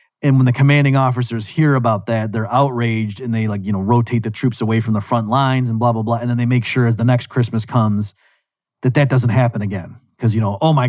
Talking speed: 260 wpm